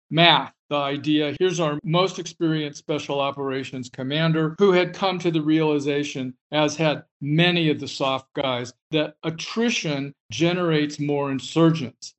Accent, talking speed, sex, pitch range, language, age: American, 140 wpm, male, 145-175 Hz, English, 50-69